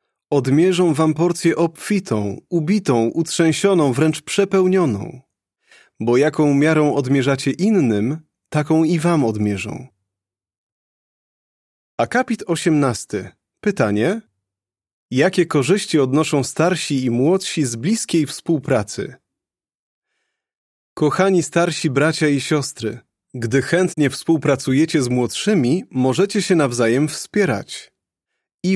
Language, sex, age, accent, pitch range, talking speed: Polish, male, 30-49, native, 130-170 Hz, 95 wpm